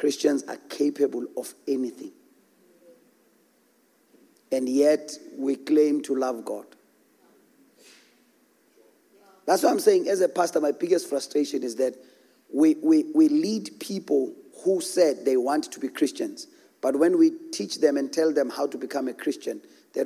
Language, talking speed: English, 145 wpm